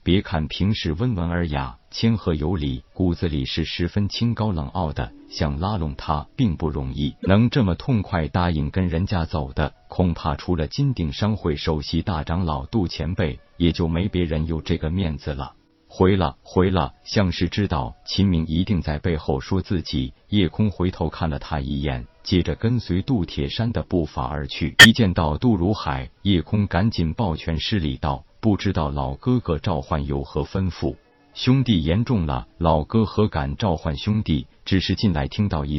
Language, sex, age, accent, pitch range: Chinese, male, 50-69, native, 75-100 Hz